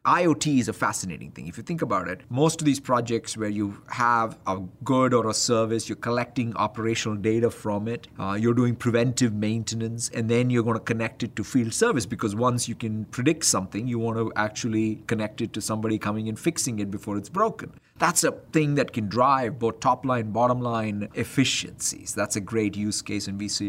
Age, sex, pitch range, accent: 50-69, male, 110-140 Hz, Indian